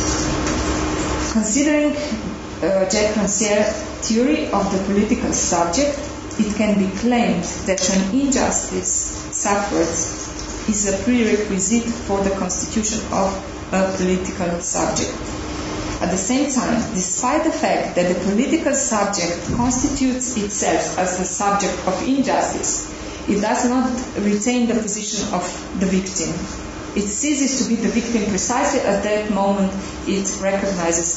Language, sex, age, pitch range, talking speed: English, female, 30-49, 185-235 Hz, 125 wpm